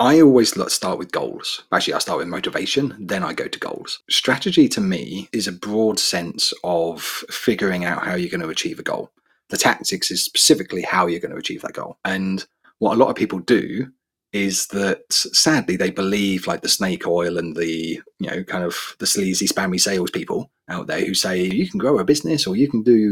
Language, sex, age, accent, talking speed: English, male, 30-49, British, 210 wpm